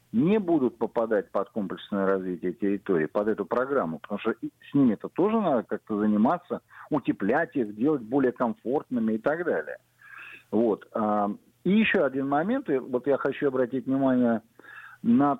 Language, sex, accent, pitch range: Russian, male, native, 125-180 Hz